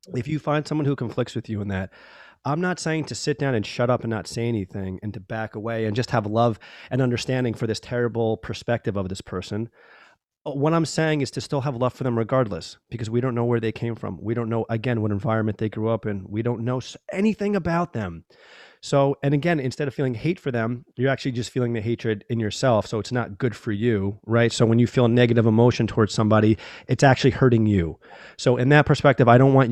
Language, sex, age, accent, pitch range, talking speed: English, male, 30-49, American, 115-140 Hz, 240 wpm